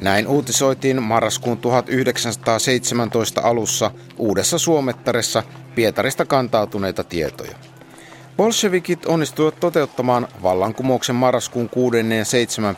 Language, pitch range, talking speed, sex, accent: Finnish, 105-130 Hz, 85 wpm, male, native